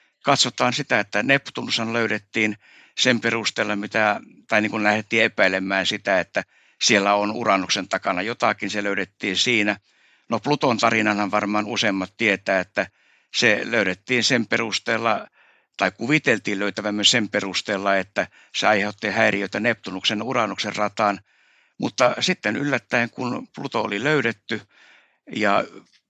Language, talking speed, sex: Finnish, 120 wpm, male